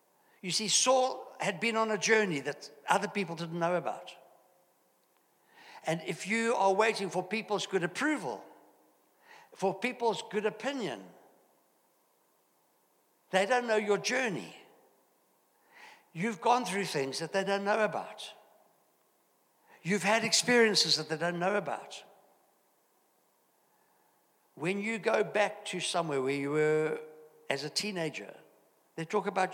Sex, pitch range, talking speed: male, 160-210 Hz, 130 wpm